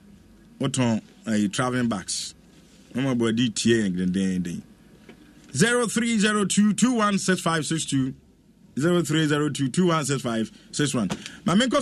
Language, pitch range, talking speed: English, 145-210 Hz, 70 wpm